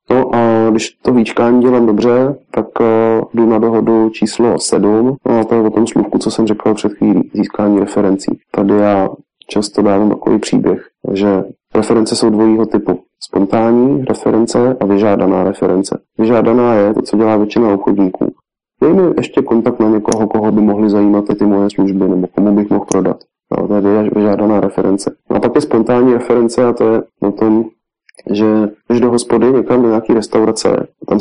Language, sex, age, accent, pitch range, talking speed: Czech, male, 20-39, native, 105-120 Hz, 170 wpm